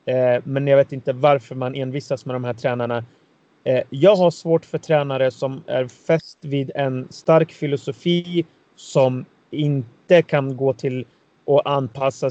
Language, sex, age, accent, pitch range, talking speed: Swedish, male, 30-49, native, 125-150 Hz, 145 wpm